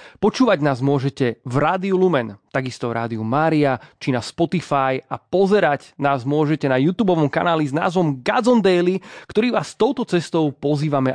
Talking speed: 155 wpm